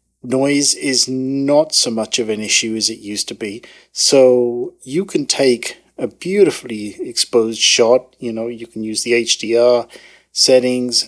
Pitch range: 115-140 Hz